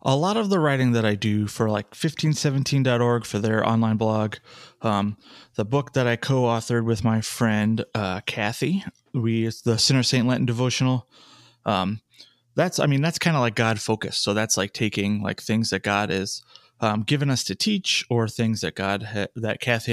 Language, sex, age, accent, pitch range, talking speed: English, male, 30-49, American, 110-125 Hz, 195 wpm